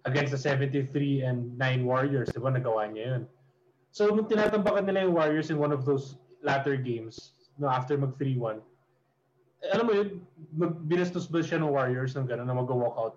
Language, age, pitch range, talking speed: English, 20-39, 125-155 Hz, 170 wpm